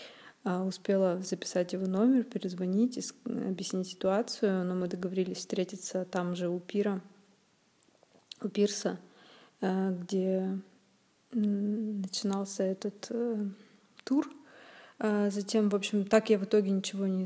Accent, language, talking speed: native, Russian, 105 wpm